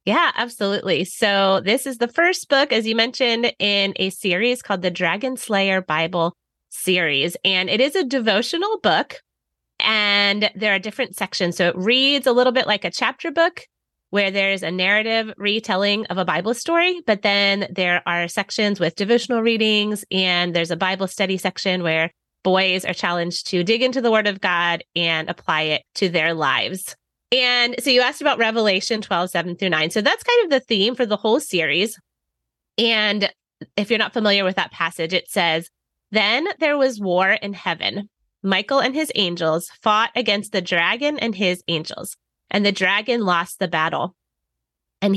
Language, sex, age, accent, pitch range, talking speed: English, female, 30-49, American, 180-235 Hz, 180 wpm